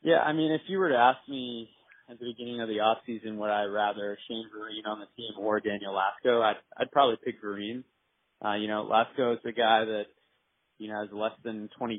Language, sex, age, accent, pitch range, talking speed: English, male, 20-39, American, 110-130 Hz, 230 wpm